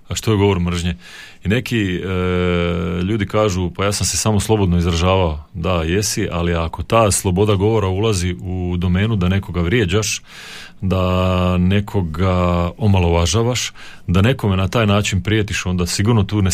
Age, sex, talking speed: 30-49, male, 155 wpm